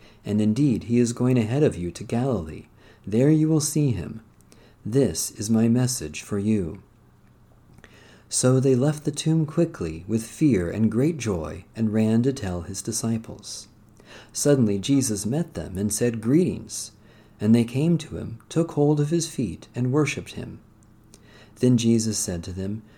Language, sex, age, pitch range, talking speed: English, male, 40-59, 100-135 Hz, 165 wpm